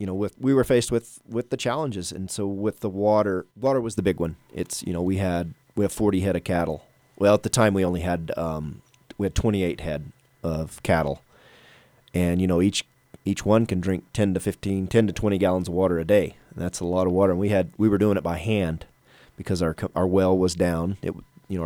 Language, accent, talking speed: English, American, 245 wpm